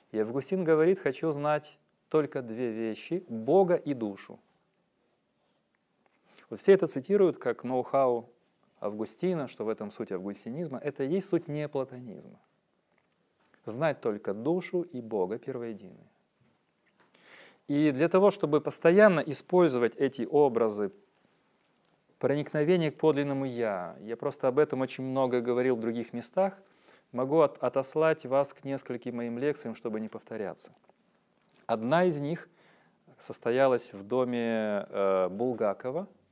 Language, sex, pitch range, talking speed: Russian, male, 115-160 Hz, 120 wpm